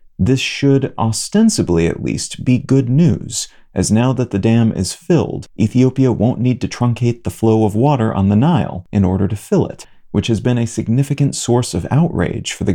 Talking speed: 200 wpm